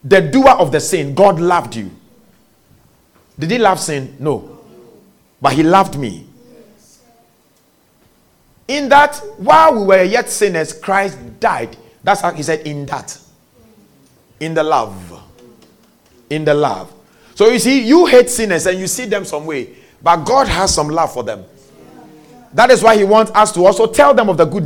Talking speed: 170 wpm